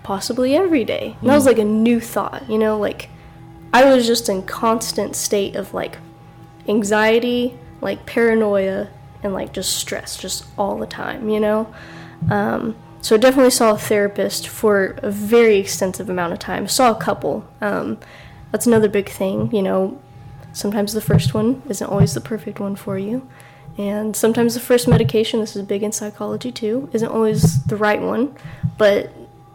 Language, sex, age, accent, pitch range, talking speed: English, female, 20-39, American, 195-230 Hz, 175 wpm